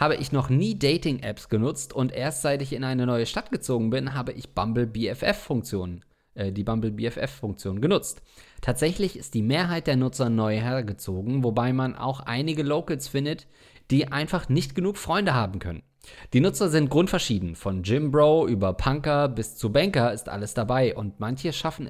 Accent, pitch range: German, 115-150 Hz